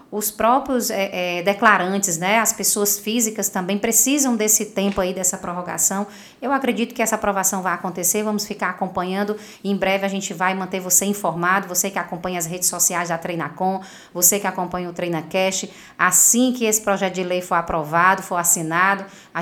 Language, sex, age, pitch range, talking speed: Portuguese, female, 20-39, 185-230 Hz, 180 wpm